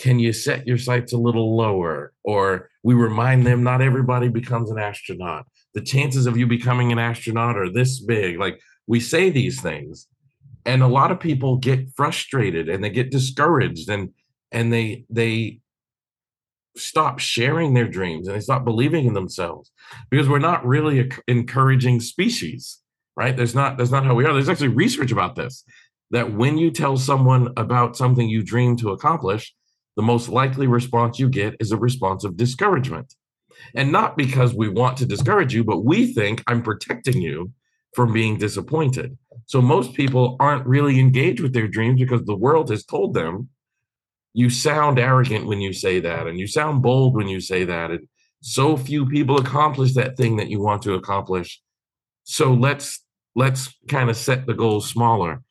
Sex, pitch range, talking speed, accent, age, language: male, 115-135 Hz, 180 wpm, American, 50-69, English